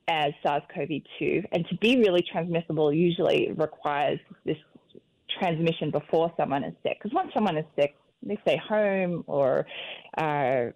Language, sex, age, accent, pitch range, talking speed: English, female, 20-39, Australian, 155-185 Hz, 140 wpm